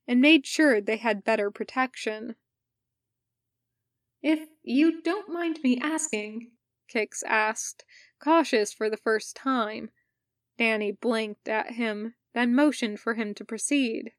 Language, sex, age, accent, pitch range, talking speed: English, female, 20-39, American, 200-245 Hz, 125 wpm